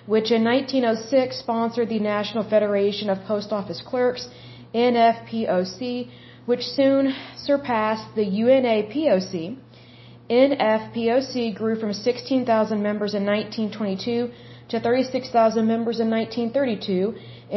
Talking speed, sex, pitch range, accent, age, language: 100 wpm, female, 200-235 Hz, American, 40-59, Bengali